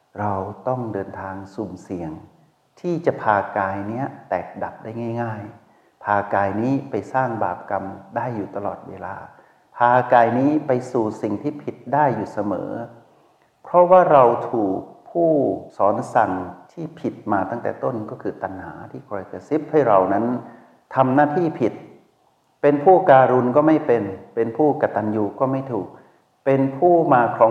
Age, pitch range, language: 60-79, 100-135 Hz, Thai